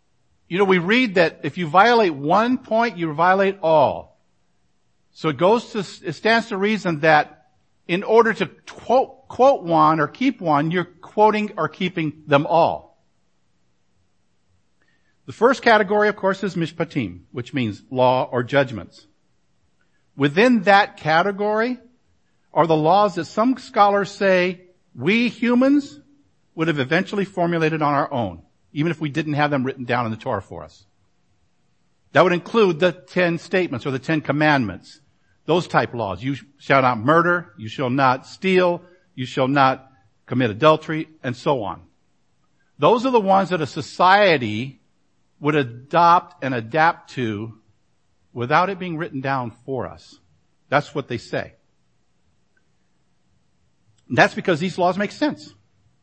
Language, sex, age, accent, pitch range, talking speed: English, male, 50-69, American, 125-190 Hz, 150 wpm